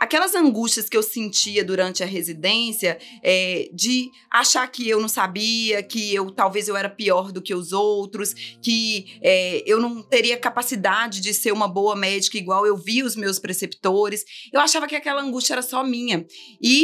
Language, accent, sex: Portuguese, Brazilian, female